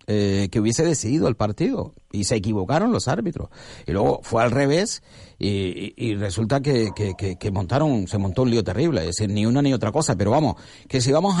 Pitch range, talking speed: 110-145 Hz, 220 wpm